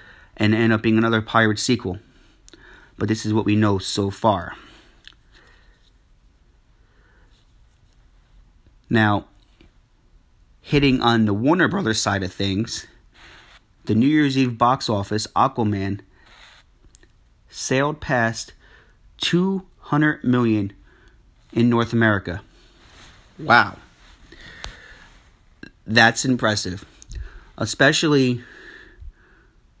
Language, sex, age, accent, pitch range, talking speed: English, male, 30-49, American, 105-130 Hz, 85 wpm